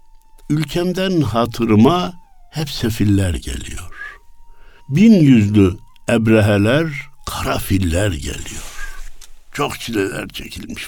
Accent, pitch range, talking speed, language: native, 90-140 Hz, 70 wpm, Turkish